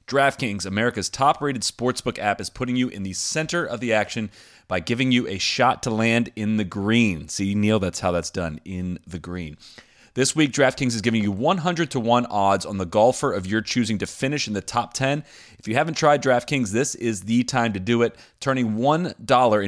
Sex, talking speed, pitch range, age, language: male, 210 wpm, 95-125 Hz, 30-49, English